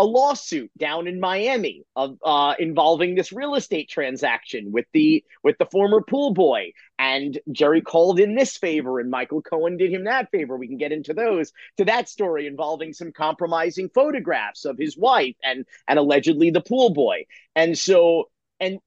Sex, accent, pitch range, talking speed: male, American, 165-235 Hz, 180 wpm